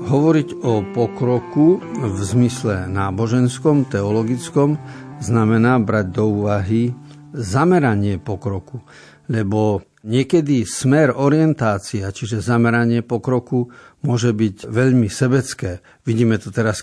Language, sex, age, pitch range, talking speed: Slovak, male, 50-69, 110-135 Hz, 95 wpm